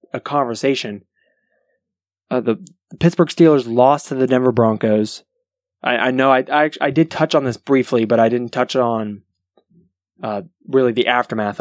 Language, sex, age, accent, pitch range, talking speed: English, male, 20-39, American, 110-140 Hz, 160 wpm